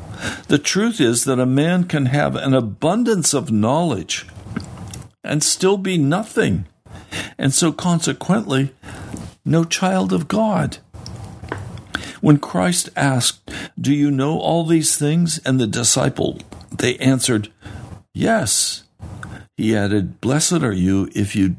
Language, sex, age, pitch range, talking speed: English, male, 60-79, 105-150 Hz, 125 wpm